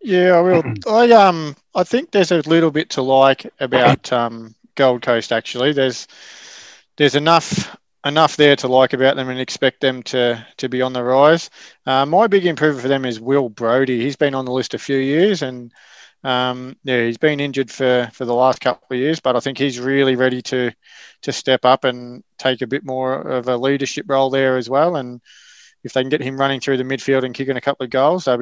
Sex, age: male, 20-39